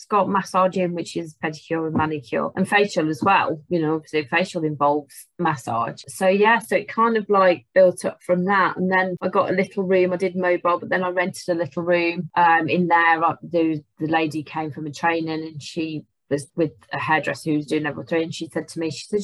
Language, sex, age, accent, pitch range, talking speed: English, female, 30-49, British, 155-190 Hz, 220 wpm